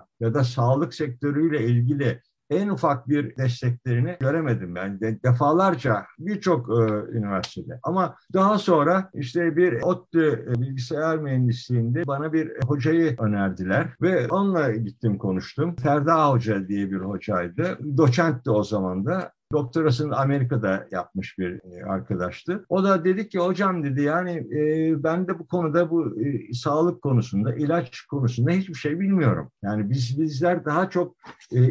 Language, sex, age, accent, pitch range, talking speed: Turkish, male, 60-79, native, 115-165 Hz, 135 wpm